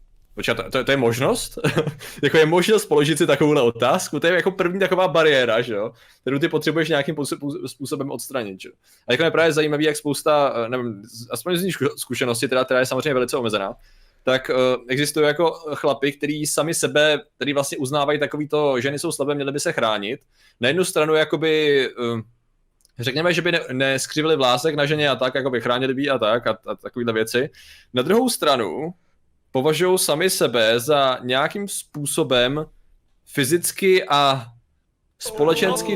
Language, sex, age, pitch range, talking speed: Czech, male, 20-39, 130-165 Hz, 170 wpm